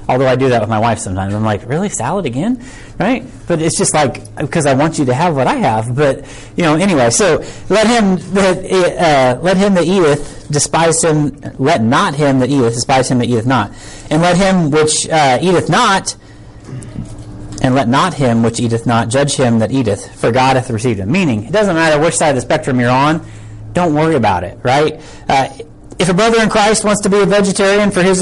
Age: 30-49